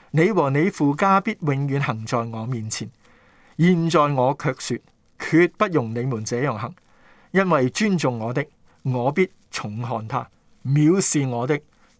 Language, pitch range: Chinese, 120-165 Hz